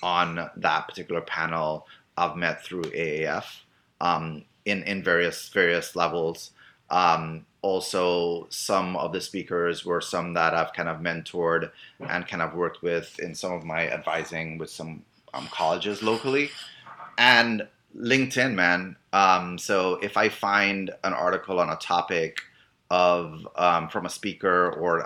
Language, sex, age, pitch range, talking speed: English, male, 30-49, 85-100 Hz, 150 wpm